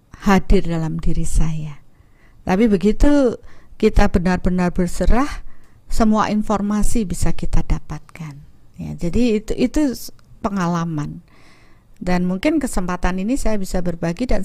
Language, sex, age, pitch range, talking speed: Indonesian, female, 40-59, 170-215 Hz, 110 wpm